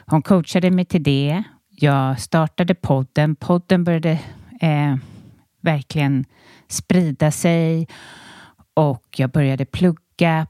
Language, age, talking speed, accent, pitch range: Swedish, 30-49, 105 wpm, native, 140-170 Hz